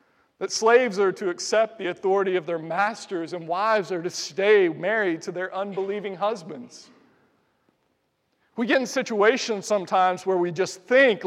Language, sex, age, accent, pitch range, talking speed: English, male, 40-59, American, 195-250 Hz, 155 wpm